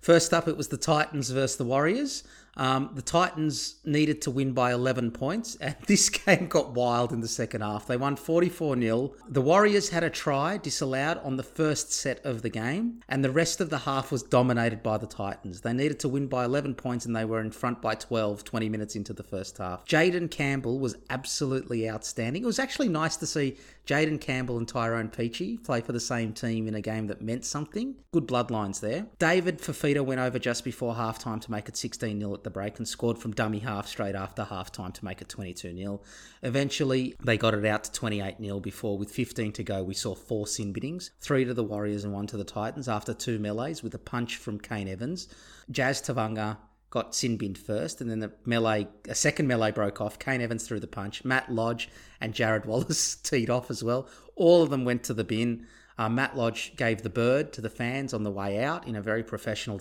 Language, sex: English, male